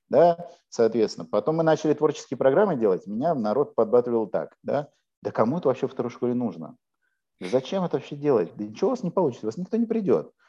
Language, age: Russian, 50-69